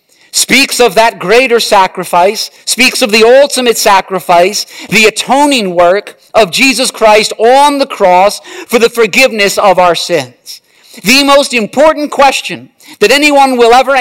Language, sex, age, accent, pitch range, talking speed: English, male, 50-69, American, 210-290 Hz, 140 wpm